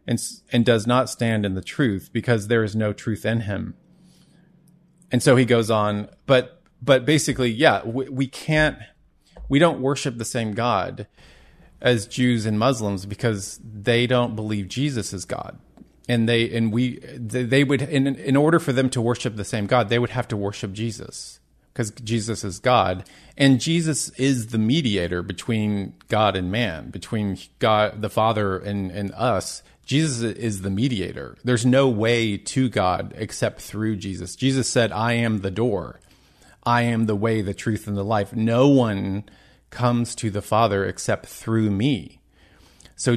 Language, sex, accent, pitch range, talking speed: English, male, American, 100-125 Hz, 175 wpm